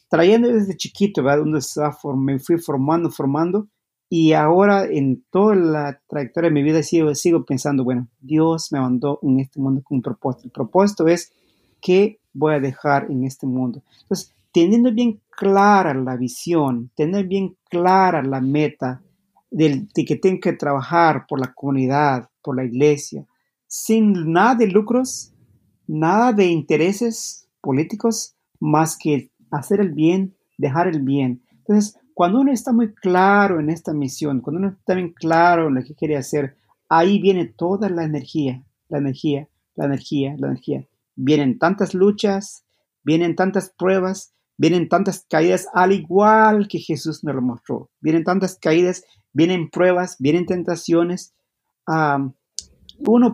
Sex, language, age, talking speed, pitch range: male, English, 50-69, 150 wpm, 145-190 Hz